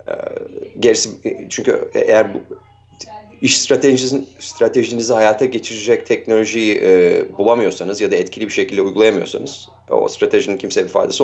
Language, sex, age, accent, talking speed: Turkish, male, 30-49, native, 125 wpm